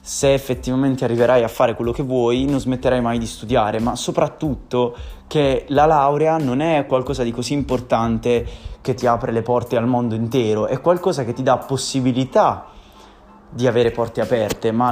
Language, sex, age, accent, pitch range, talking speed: Indonesian, male, 20-39, Italian, 110-130 Hz, 175 wpm